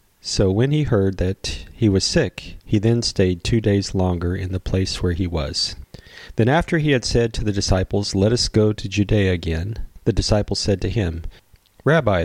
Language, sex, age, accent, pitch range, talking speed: English, male, 40-59, American, 95-120 Hz, 195 wpm